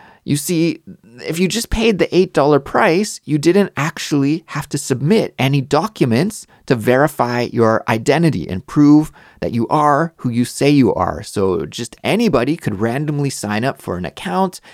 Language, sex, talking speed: English, male, 165 wpm